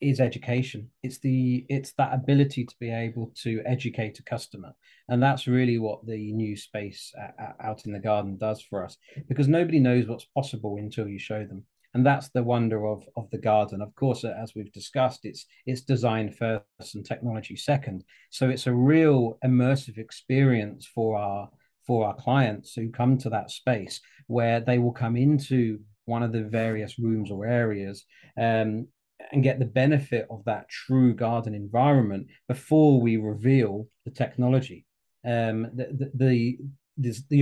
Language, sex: English, male